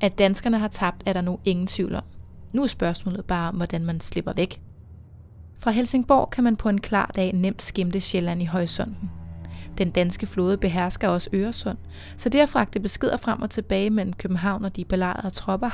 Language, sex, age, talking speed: Danish, female, 30-49, 195 wpm